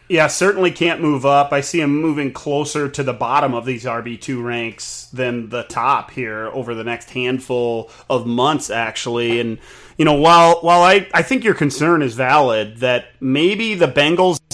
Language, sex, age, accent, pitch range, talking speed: English, male, 30-49, American, 125-155 Hz, 180 wpm